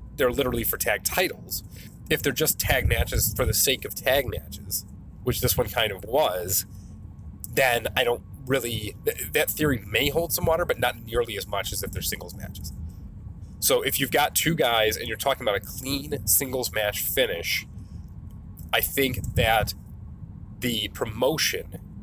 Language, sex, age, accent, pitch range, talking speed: English, male, 30-49, American, 95-120 Hz, 170 wpm